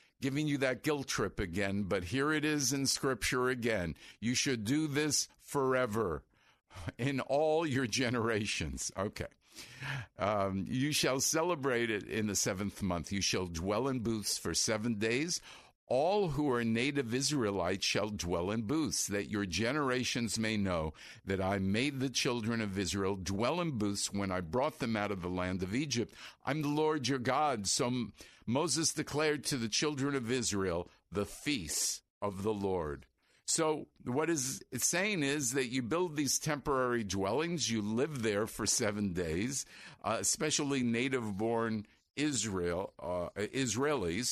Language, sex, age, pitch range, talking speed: English, male, 50-69, 100-140 Hz, 155 wpm